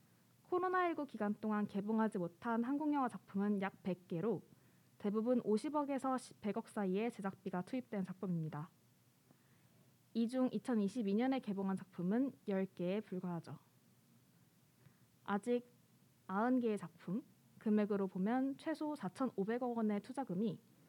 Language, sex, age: Korean, female, 20-39